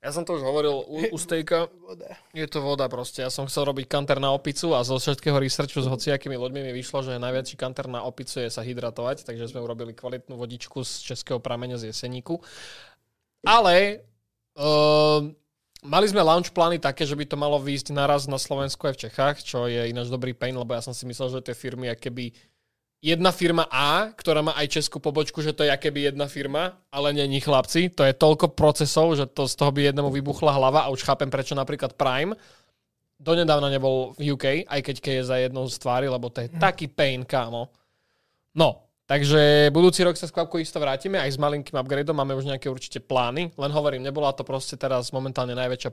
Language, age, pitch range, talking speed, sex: Slovak, 20-39, 125-150 Hz, 210 wpm, male